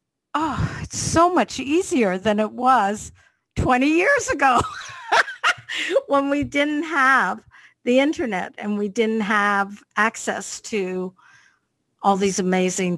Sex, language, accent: female, English, American